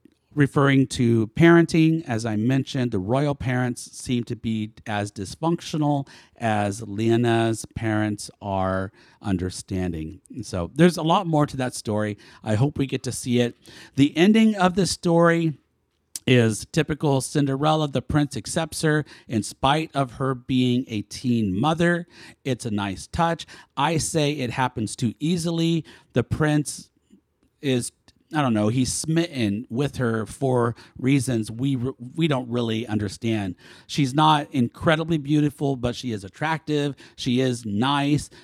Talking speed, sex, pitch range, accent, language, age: 145 wpm, male, 110-145 Hz, American, English, 50-69